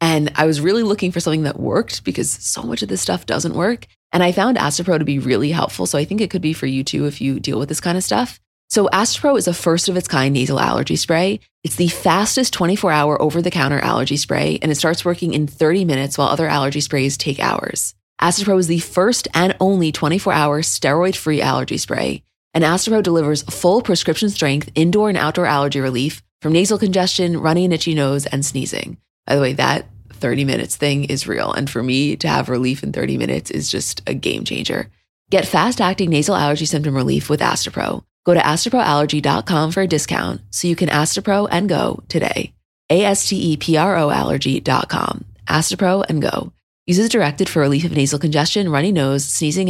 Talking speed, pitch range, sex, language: 195 wpm, 140-180 Hz, female, English